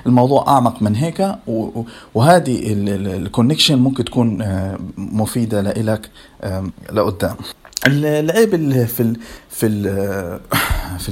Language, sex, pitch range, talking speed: Arabic, male, 100-135 Hz, 90 wpm